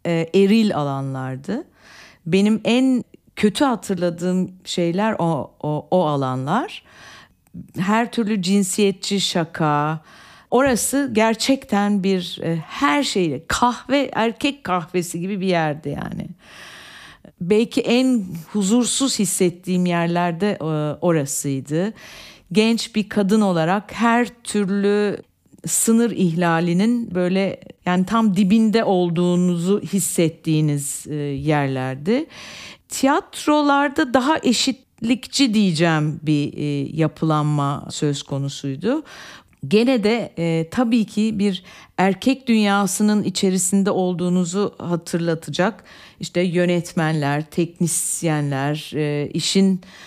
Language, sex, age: Turkish, female, 50-69